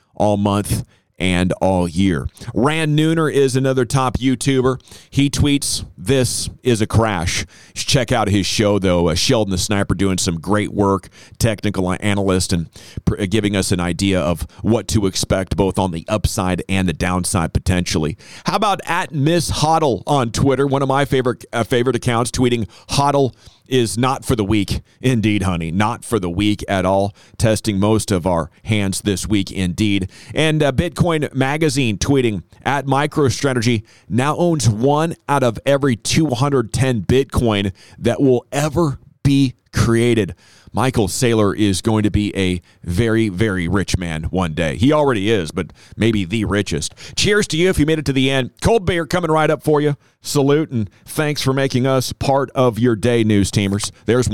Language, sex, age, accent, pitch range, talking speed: English, male, 40-59, American, 100-140 Hz, 175 wpm